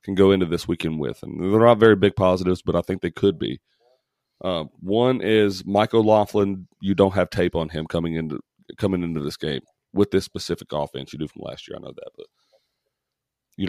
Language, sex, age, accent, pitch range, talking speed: English, male, 30-49, American, 85-105 Hz, 215 wpm